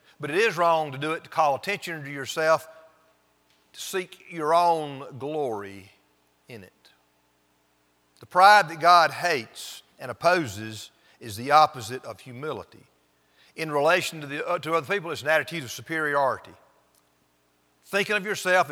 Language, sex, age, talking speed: English, male, 50-69, 145 wpm